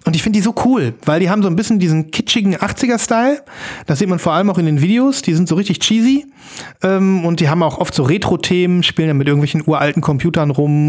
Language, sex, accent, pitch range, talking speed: German, male, German, 145-185 Hz, 235 wpm